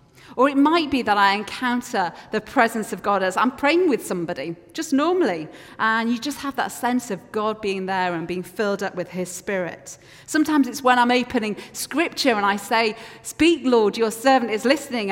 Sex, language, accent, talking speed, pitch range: female, English, British, 200 wpm, 185-245 Hz